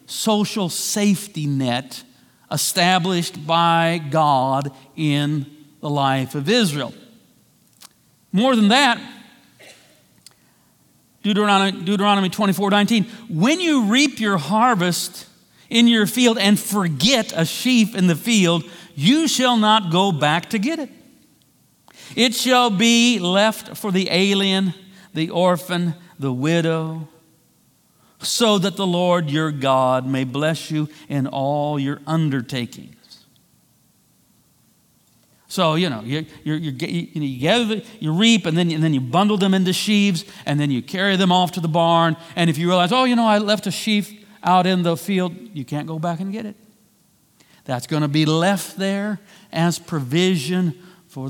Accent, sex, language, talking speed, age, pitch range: American, male, English, 145 wpm, 50-69, 155-205 Hz